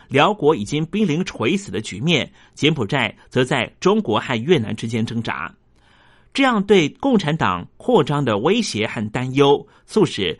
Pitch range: 115-175 Hz